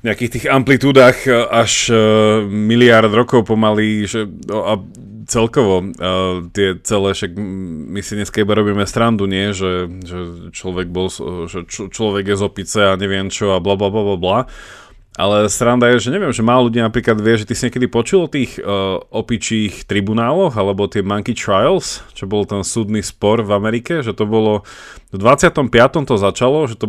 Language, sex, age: Slovak, male, 30-49